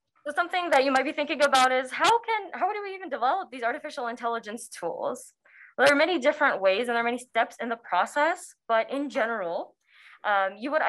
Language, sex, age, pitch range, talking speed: English, female, 20-39, 200-285 Hz, 220 wpm